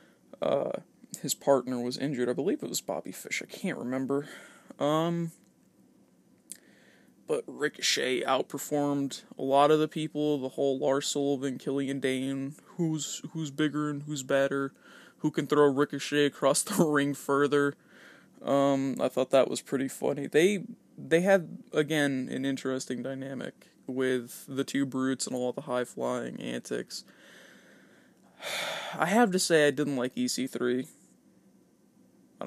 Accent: American